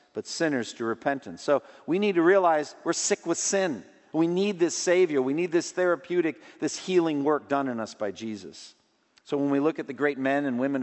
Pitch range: 130-185 Hz